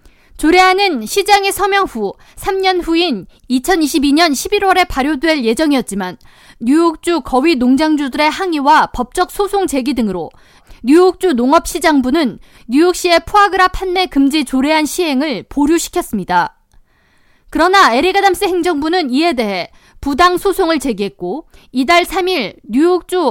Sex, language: female, Korean